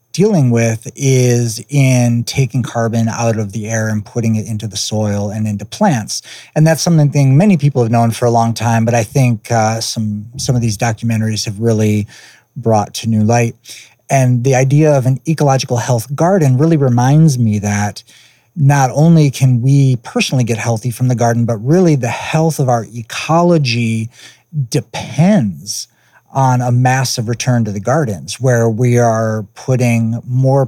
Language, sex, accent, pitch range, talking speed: English, male, American, 110-130 Hz, 170 wpm